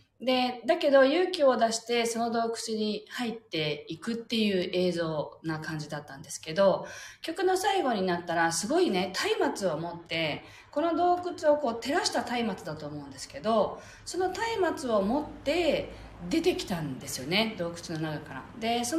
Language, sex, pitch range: Japanese, female, 160-260 Hz